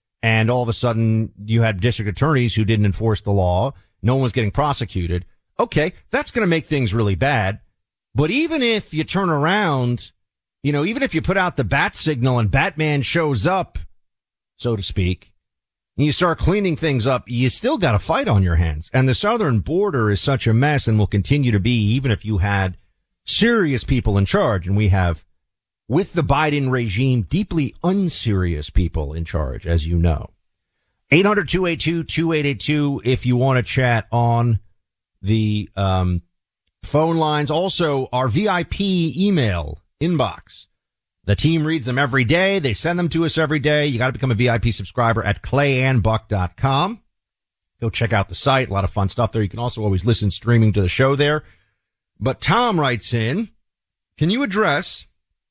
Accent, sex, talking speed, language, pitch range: American, male, 180 wpm, English, 100-150 Hz